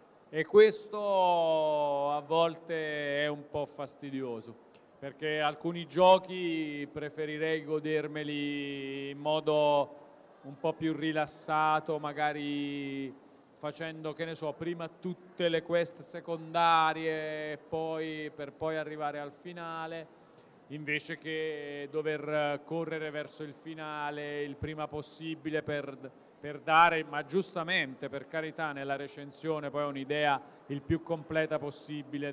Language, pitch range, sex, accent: Italian, 150-170 Hz, male, native